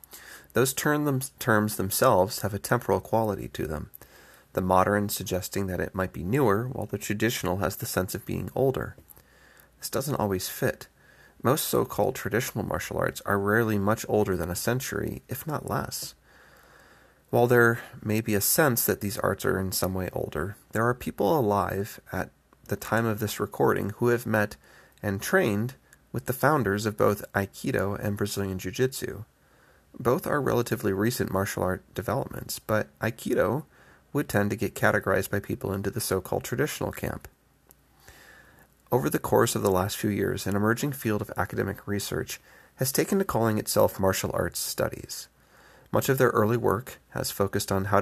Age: 30-49